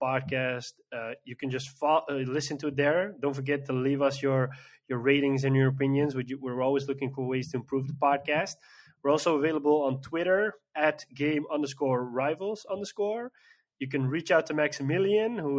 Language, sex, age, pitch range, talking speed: English, male, 20-39, 130-155 Hz, 185 wpm